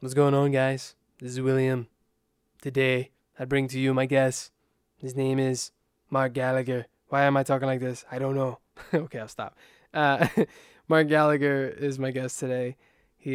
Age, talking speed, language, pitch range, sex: 20-39, 175 wpm, English, 125-145 Hz, male